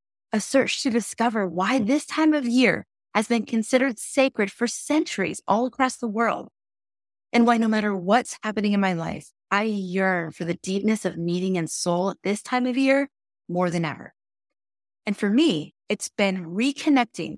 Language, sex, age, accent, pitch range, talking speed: English, female, 20-39, American, 180-235 Hz, 175 wpm